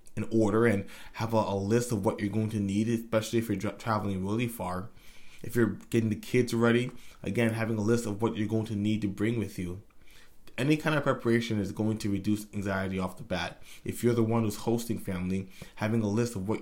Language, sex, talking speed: English, male, 230 wpm